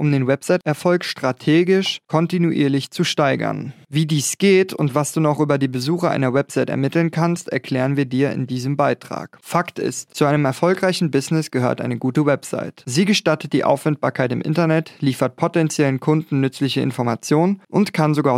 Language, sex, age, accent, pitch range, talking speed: German, male, 30-49, German, 135-165 Hz, 165 wpm